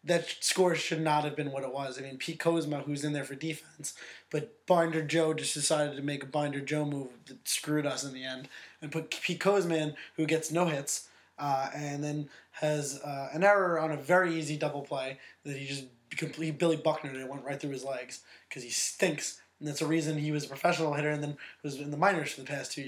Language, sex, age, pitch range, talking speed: English, male, 20-39, 140-160 Hz, 240 wpm